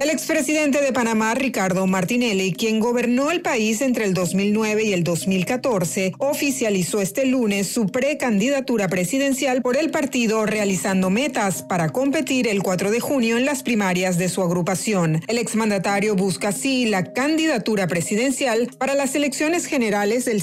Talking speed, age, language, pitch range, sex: 150 wpm, 40-59, Spanish, 190-255 Hz, female